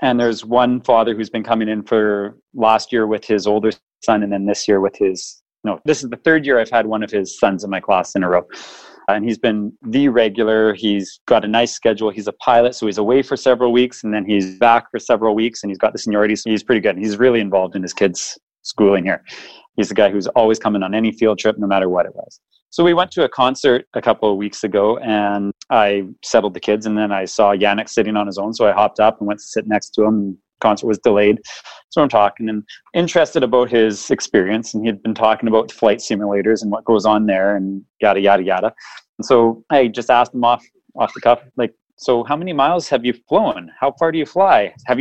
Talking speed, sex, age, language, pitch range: 245 wpm, male, 30-49, English, 105-125 Hz